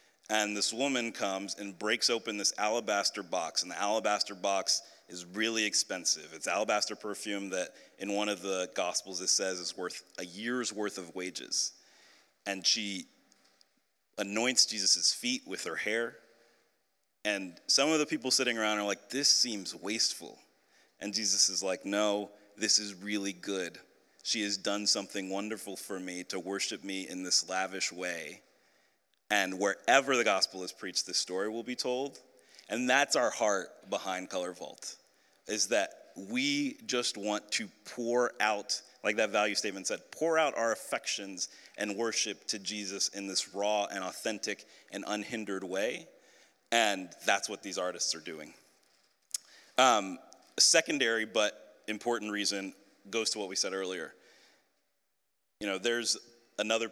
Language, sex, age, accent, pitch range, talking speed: English, male, 30-49, American, 95-115 Hz, 155 wpm